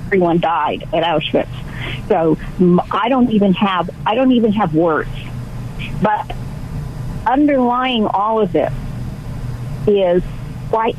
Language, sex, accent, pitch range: English, female, American, 175-260 Hz